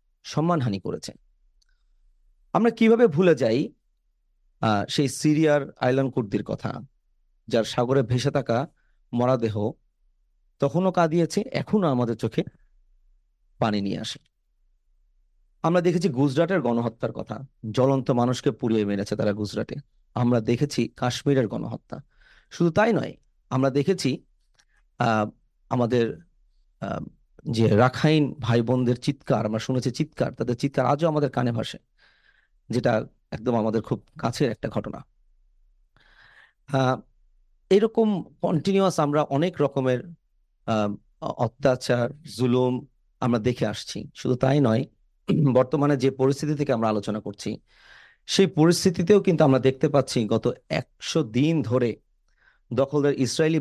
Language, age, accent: Bengali, 40-59, native